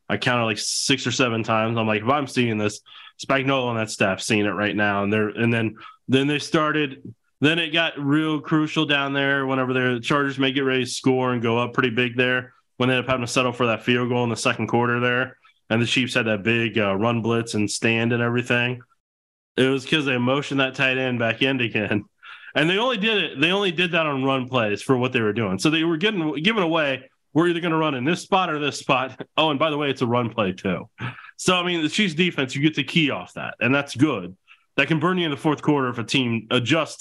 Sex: male